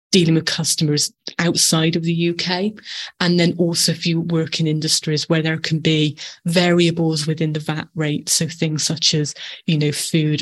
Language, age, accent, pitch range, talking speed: English, 20-39, British, 155-175 Hz, 180 wpm